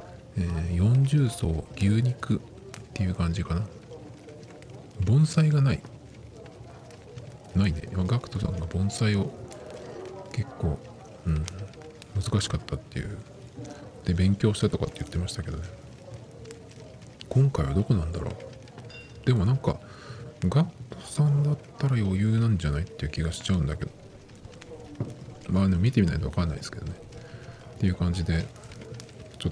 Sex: male